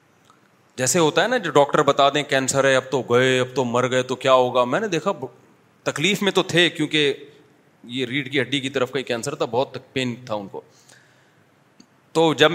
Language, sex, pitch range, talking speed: Urdu, male, 130-165 Hz, 215 wpm